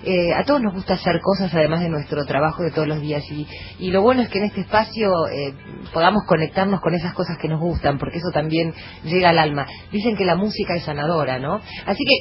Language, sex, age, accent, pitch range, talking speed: Spanish, female, 30-49, Argentinian, 150-210 Hz, 235 wpm